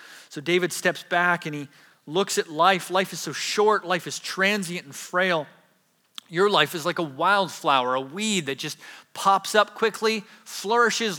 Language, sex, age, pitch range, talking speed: English, male, 30-49, 155-195 Hz, 170 wpm